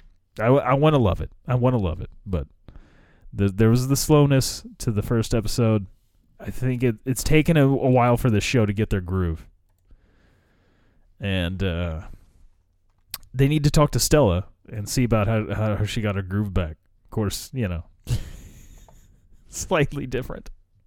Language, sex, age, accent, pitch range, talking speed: English, male, 30-49, American, 90-120 Hz, 175 wpm